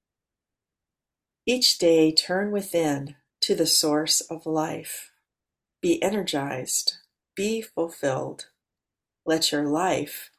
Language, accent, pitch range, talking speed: English, American, 155-255 Hz, 90 wpm